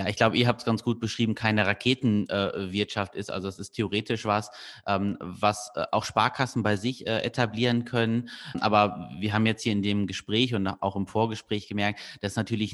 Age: 30-49